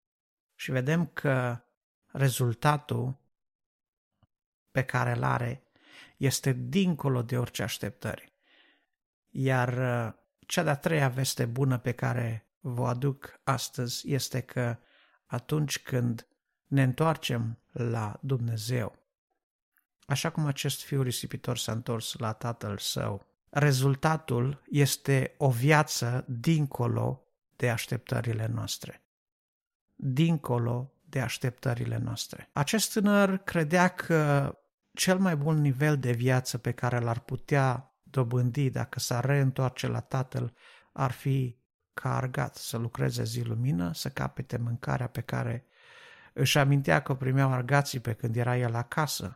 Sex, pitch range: male, 120-150 Hz